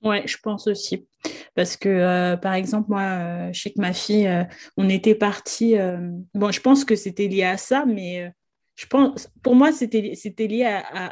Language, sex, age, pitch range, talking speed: French, female, 20-39, 185-220 Hz, 215 wpm